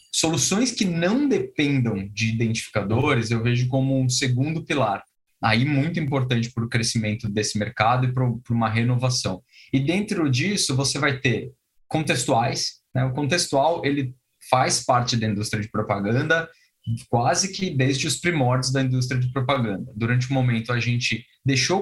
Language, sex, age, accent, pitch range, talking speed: Portuguese, male, 20-39, Brazilian, 115-140 Hz, 155 wpm